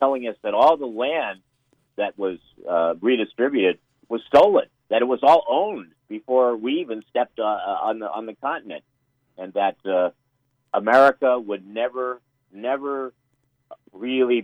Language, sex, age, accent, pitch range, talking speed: English, male, 50-69, American, 105-135 Hz, 145 wpm